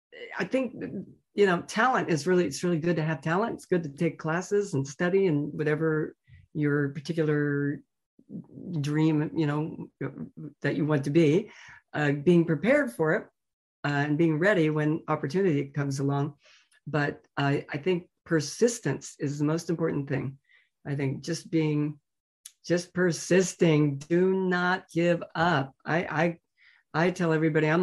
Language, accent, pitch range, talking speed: English, American, 145-180 Hz, 155 wpm